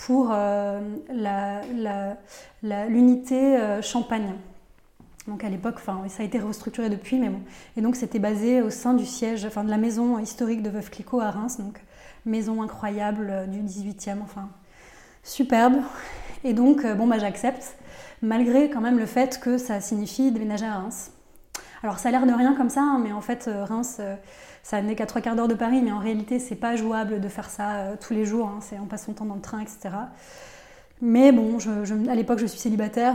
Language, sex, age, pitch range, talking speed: French, female, 20-39, 210-245 Hz, 200 wpm